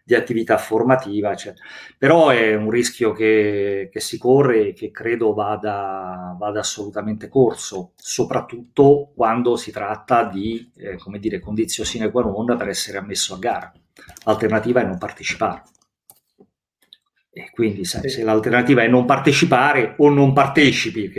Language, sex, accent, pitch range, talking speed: Italian, male, native, 105-125 Hz, 135 wpm